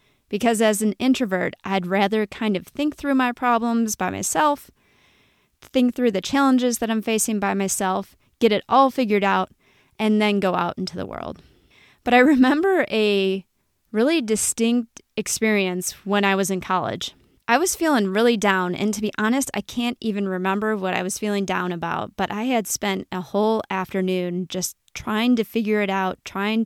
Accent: American